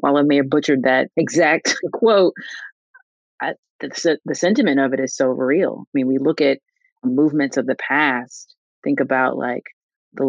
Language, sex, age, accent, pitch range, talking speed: English, female, 30-49, American, 135-165 Hz, 170 wpm